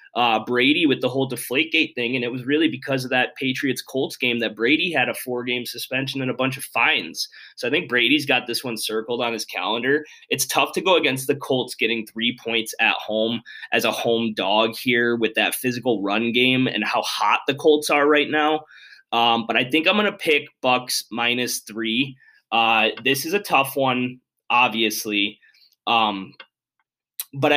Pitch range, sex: 115-140 Hz, male